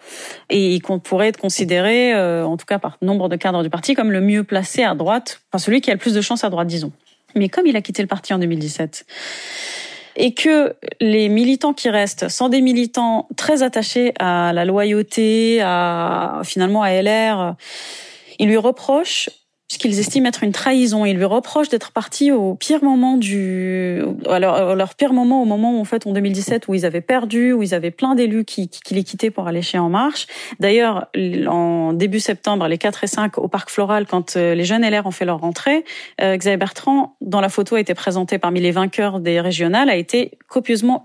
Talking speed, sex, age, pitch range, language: 210 wpm, female, 30-49, 185-245 Hz, French